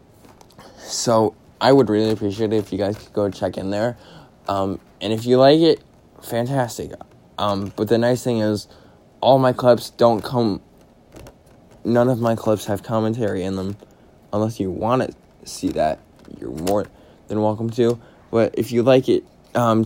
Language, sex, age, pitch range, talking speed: English, male, 20-39, 100-120 Hz, 170 wpm